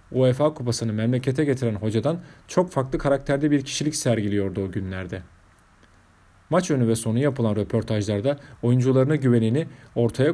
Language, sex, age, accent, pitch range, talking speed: Turkish, male, 40-59, native, 105-145 Hz, 130 wpm